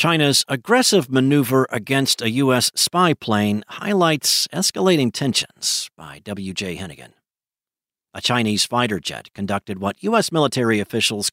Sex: male